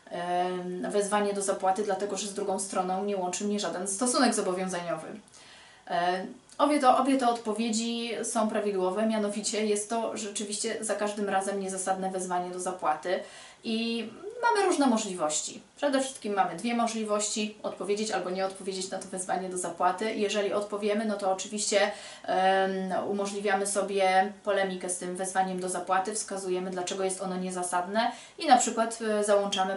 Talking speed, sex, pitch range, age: 140 wpm, female, 190-220 Hz, 30-49